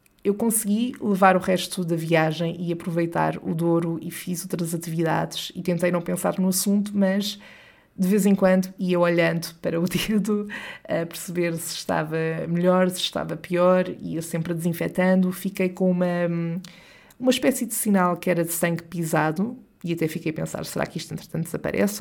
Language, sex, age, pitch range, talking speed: Portuguese, female, 20-39, 170-200 Hz, 175 wpm